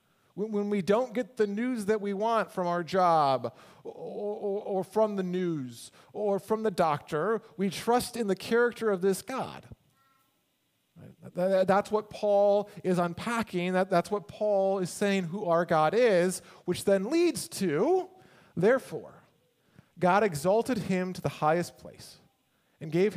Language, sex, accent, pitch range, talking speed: English, male, American, 150-205 Hz, 145 wpm